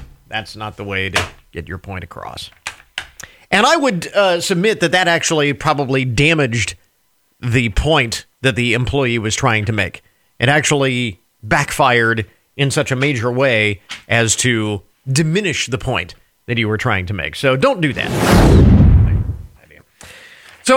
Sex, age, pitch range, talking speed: male, 40-59, 115-185 Hz, 150 wpm